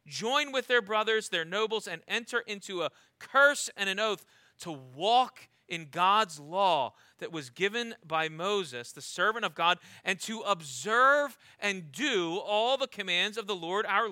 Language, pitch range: English, 175-245 Hz